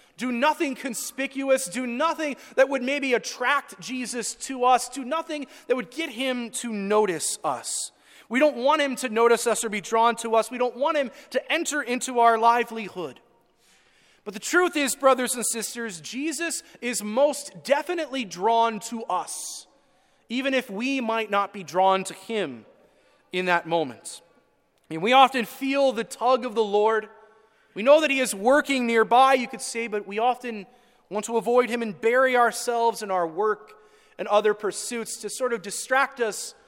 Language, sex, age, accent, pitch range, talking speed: English, male, 30-49, American, 215-270 Hz, 175 wpm